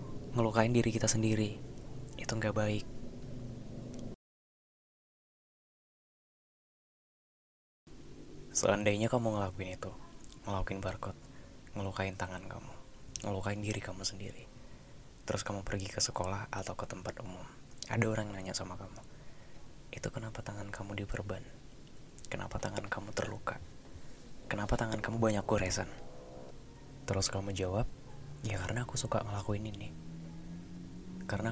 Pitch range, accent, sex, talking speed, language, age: 100-125 Hz, native, male, 110 wpm, Indonesian, 20-39